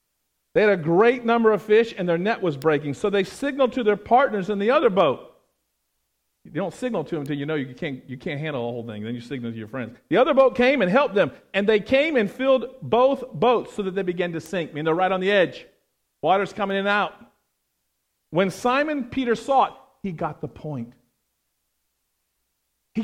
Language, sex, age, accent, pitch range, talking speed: English, male, 40-59, American, 150-240 Hz, 220 wpm